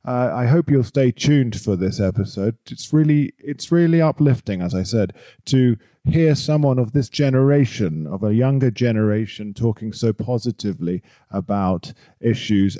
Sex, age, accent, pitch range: male, 40-59, British, 110-145 Hz